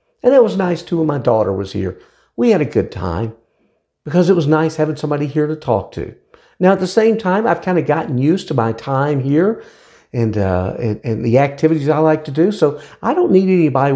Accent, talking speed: American, 230 wpm